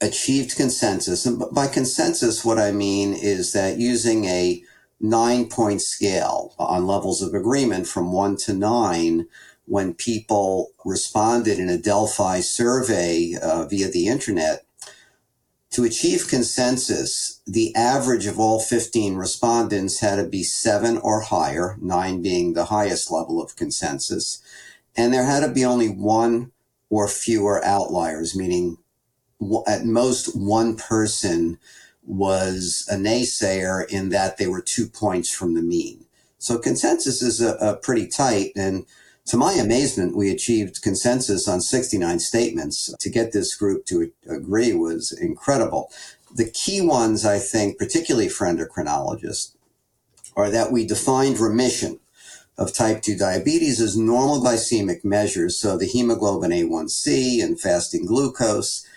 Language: English